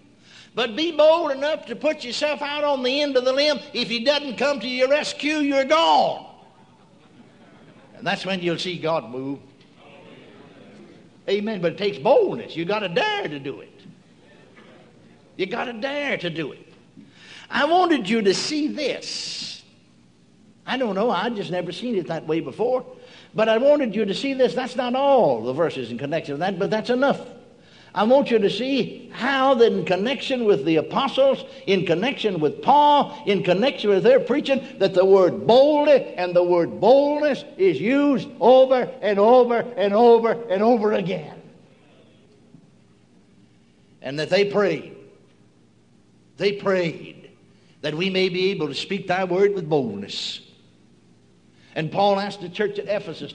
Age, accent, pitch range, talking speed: 60-79, American, 180-265 Hz, 165 wpm